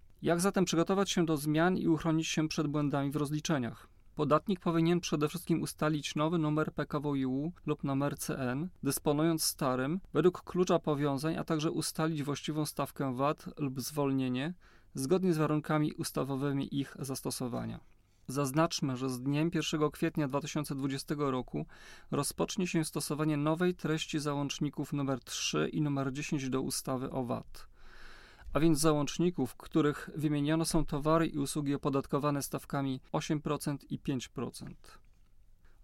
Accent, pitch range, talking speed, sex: native, 140-165 Hz, 135 wpm, male